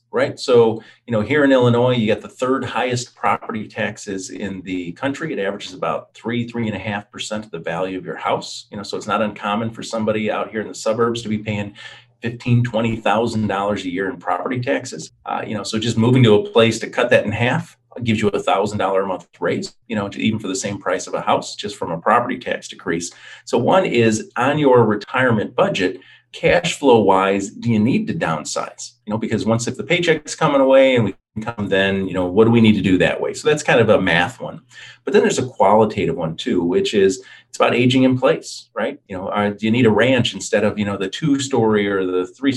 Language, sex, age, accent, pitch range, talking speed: English, male, 40-59, American, 100-125 Hz, 245 wpm